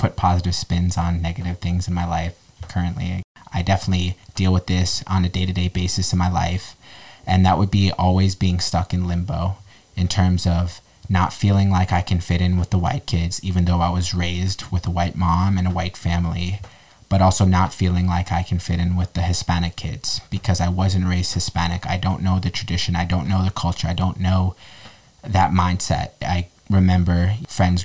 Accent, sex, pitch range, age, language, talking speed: American, male, 90-95 Hz, 20-39, English, 205 wpm